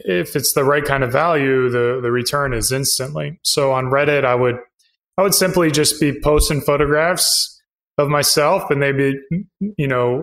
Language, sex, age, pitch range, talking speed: English, male, 20-39, 130-150 Hz, 175 wpm